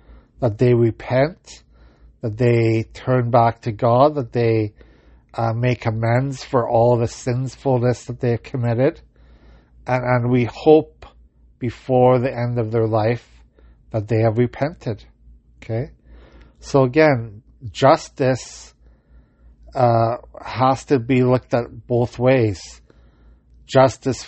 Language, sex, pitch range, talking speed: English, male, 95-130 Hz, 120 wpm